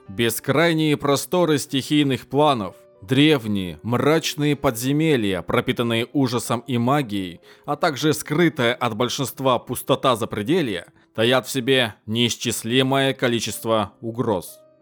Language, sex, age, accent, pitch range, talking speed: Russian, male, 20-39, native, 105-140 Hz, 95 wpm